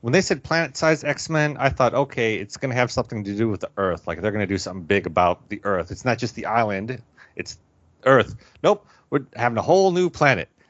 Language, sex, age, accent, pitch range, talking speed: English, male, 30-49, American, 100-130 Hz, 235 wpm